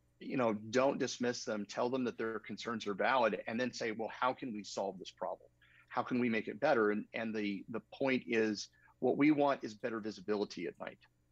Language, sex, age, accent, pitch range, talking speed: English, male, 40-59, American, 100-125 Hz, 225 wpm